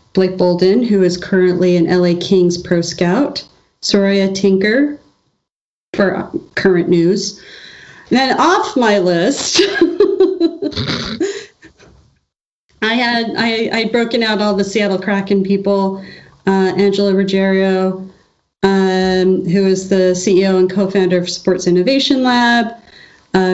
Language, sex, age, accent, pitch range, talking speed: English, female, 30-49, American, 180-225 Hz, 115 wpm